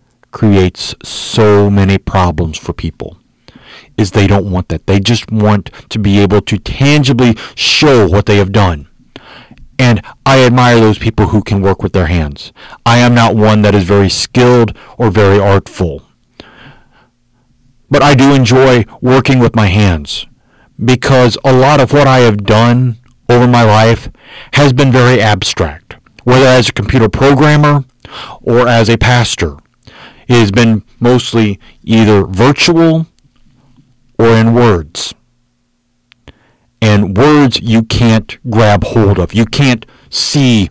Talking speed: 145 wpm